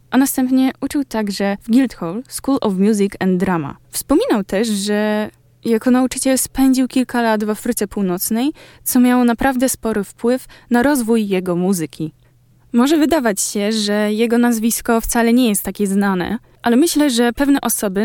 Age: 20-39